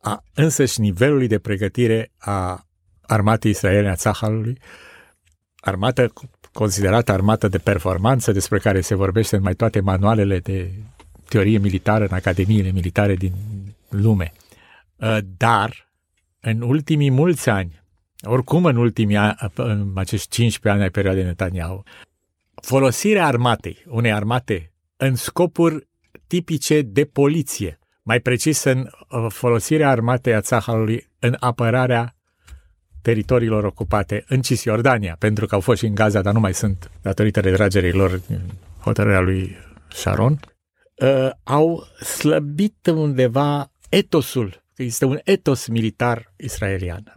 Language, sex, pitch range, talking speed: Romanian, male, 100-135 Hz, 120 wpm